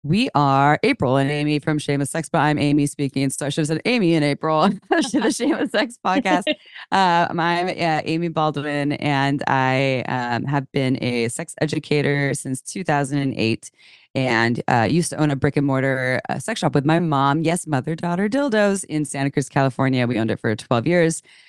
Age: 20-39